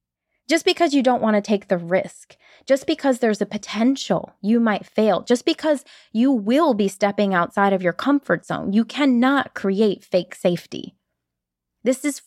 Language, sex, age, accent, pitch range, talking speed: English, female, 20-39, American, 190-260 Hz, 170 wpm